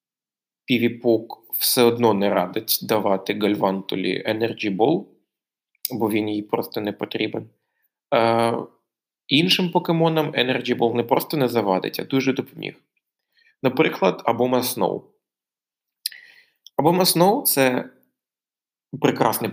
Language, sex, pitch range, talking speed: Ukrainian, male, 110-135 Hz, 100 wpm